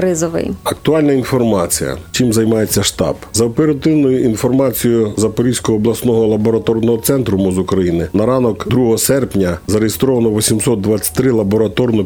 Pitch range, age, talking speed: 100-125 Hz, 50-69, 105 wpm